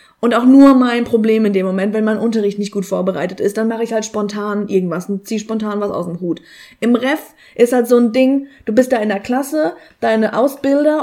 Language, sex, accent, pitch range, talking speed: German, female, German, 200-240 Hz, 230 wpm